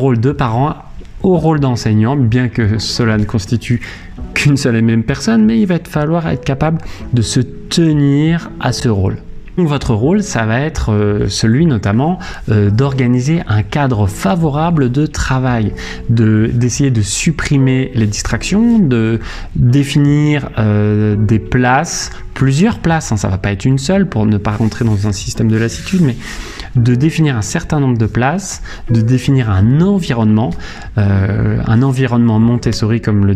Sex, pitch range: male, 105-140 Hz